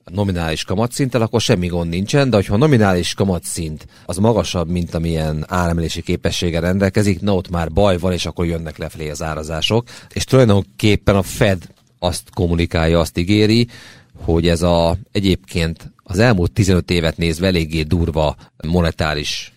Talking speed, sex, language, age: 150 wpm, male, Hungarian, 40-59